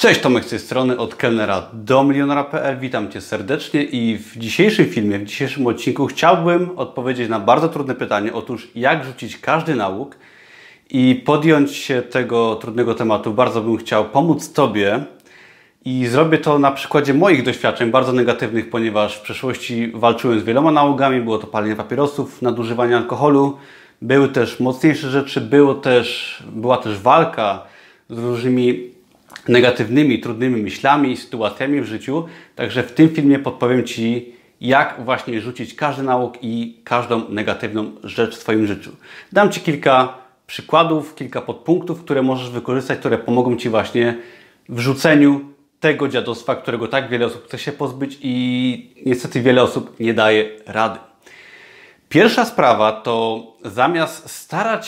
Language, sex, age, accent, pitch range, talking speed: Polish, male, 30-49, native, 115-140 Hz, 145 wpm